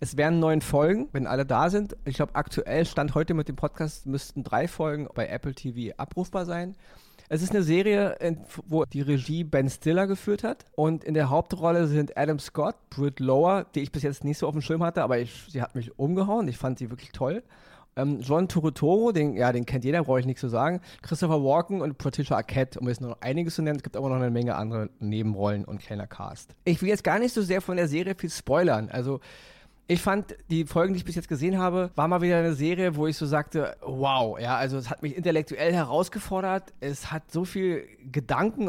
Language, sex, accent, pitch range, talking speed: German, male, German, 135-175 Hz, 220 wpm